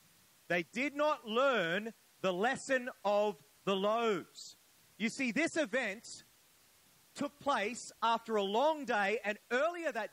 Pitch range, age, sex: 210-290 Hz, 40-59, male